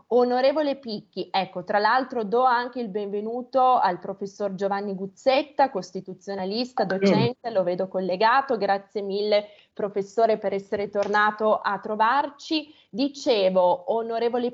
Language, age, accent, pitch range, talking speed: Italian, 20-39, native, 195-230 Hz, 115 wpm